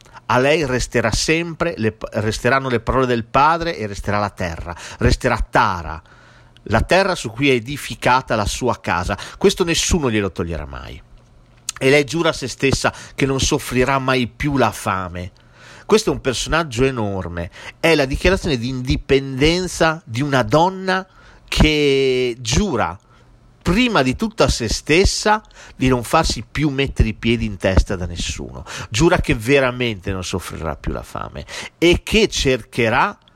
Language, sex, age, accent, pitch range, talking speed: Italian, male, 40-59, native, 110-155 Hz, 155 wpm